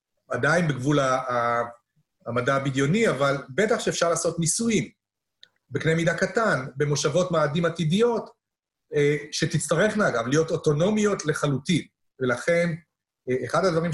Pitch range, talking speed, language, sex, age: 135-170 Hz, 110 wpm, Hebrew, male, 40-59